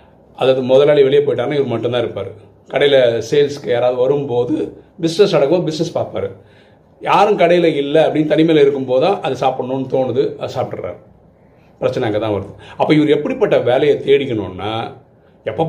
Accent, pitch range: native, 110-170 Hz